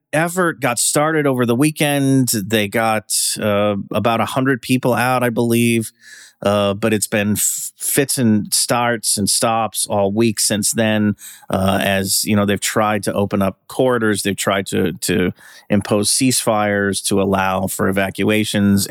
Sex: male